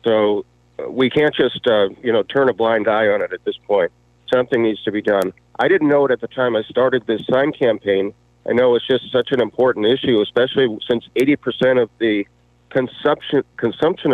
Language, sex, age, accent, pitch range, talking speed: English, male, 50-69, American, 105-130 Hz, 210 wpm